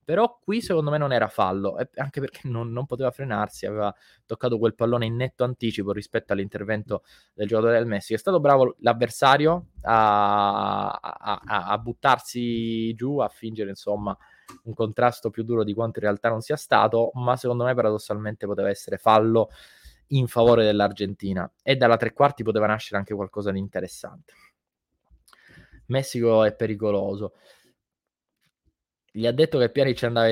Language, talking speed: Italian, 155 wpm